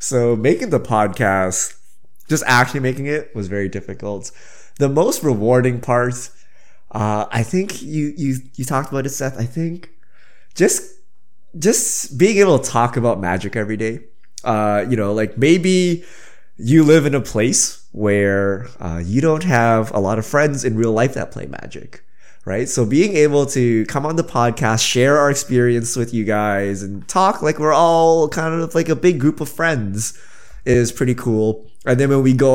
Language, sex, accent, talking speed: English, male, American, 180 wpm